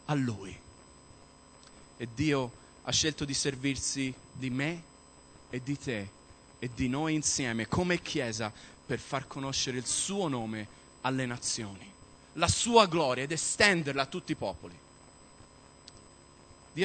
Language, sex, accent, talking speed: Italian, male, native, 130 wpm